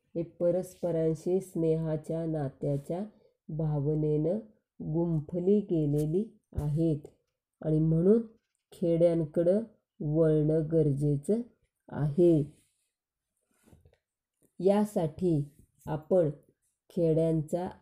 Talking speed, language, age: 55 wpm, Marathi, 20-39